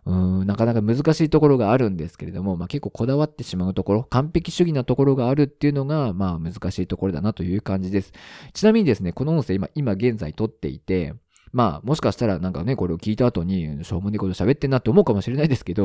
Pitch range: 90-130 Hz